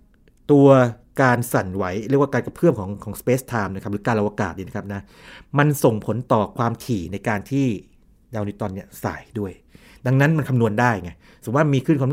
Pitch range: 105-135 Hz